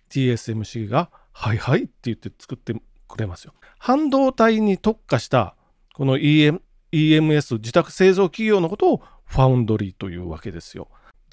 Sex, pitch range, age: male, 115-190 Hz, 40-59